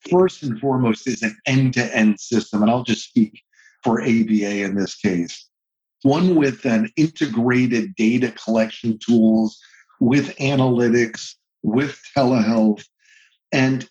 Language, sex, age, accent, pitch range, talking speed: English, male, 50-69, American, 115-150 Hz, 120 wpm